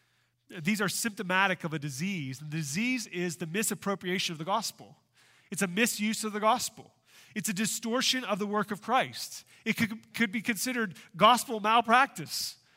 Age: 30-49